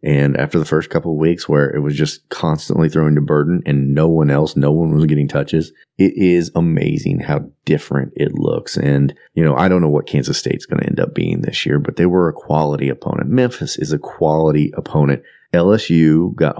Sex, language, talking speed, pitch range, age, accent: male, English, 215 wpm, 75-100 Hz, 30-49, American